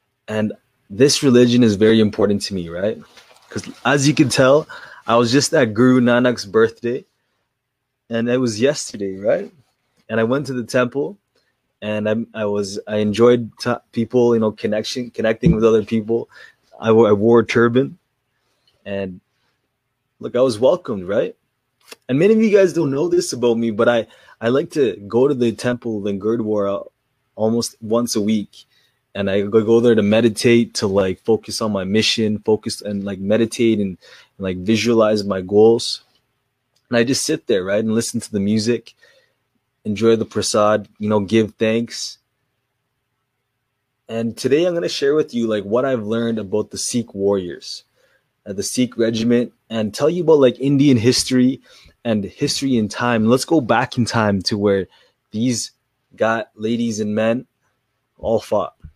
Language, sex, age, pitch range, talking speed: English, male, 20-39, 105-125 Hz, 170 wpm